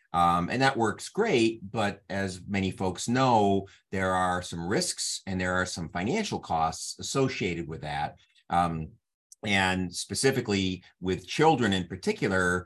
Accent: American